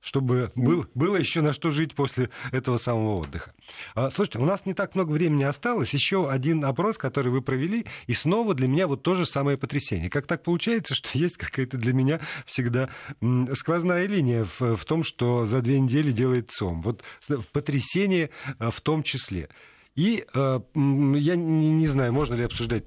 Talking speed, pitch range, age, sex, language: 175 wpm, 120-165 Hz, 40-59, male, Russian